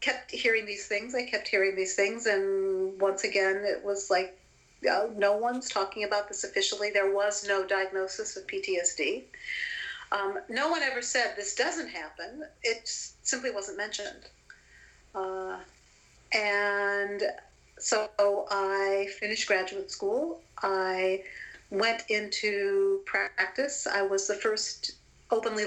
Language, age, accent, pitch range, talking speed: English, 50-69, American, 195-230 Hz, 135 wpm